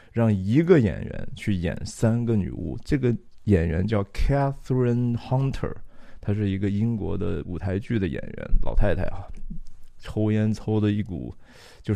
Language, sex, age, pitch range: Chinese, male, 20-39, 95-120 Hz